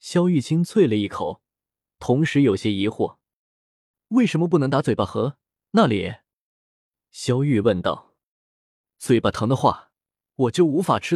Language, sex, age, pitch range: Chinese, male, 20-39, 105-160 Hz